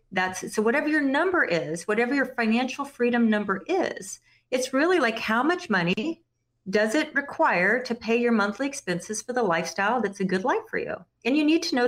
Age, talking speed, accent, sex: 40-59, 200 wpm, American, female